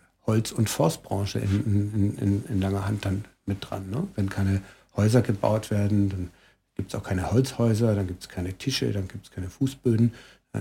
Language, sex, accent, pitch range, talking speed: German, male, German, 100-115 Hz, 200 wpm